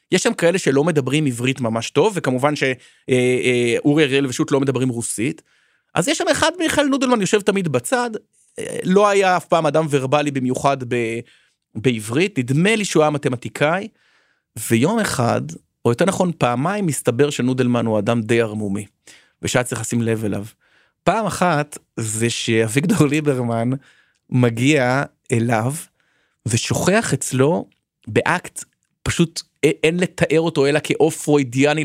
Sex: male